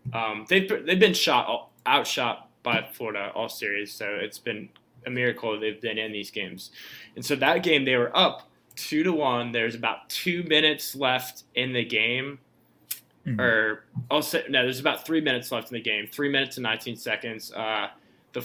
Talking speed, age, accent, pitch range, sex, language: 180 wpm, 20-39, American, 115-135 Hz, male, English